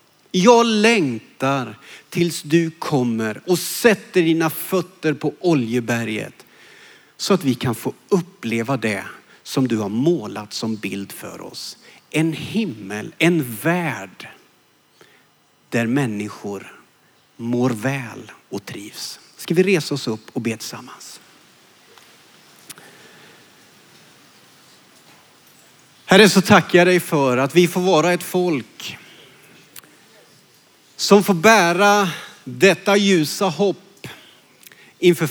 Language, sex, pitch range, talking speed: Swedish, male, 135-210 Hz, 105 wpm